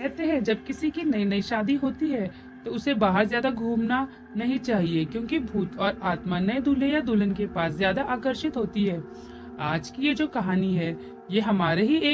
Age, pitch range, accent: 40-59, 180-255 Hz, native